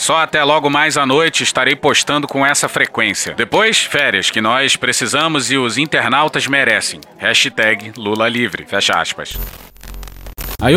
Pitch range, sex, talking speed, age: 110-160 Hz, male, 145 wpm, 30-49